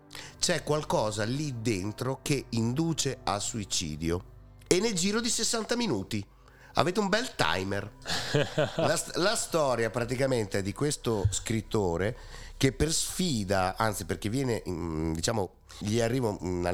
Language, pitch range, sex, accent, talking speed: Italian, 90-125 Hz, male, native, 130 wpm